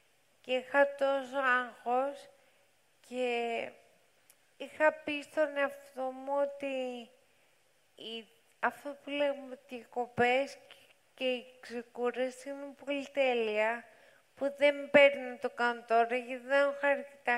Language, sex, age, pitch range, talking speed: Greek, female, 30-49, 240-280 Hz, 110 wpm